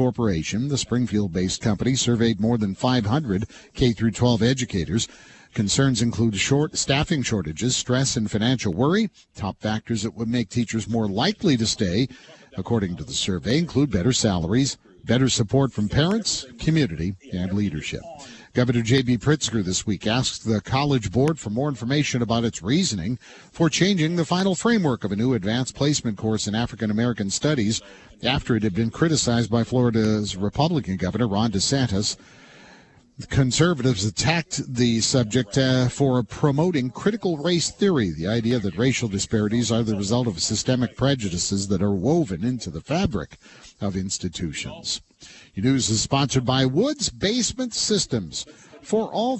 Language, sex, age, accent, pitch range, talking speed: English, male, 50-69, American, 110-140 Hz, 150 wpm